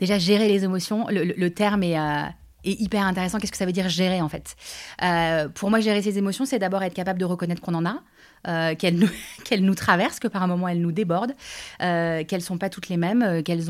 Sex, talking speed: female, 260 wpm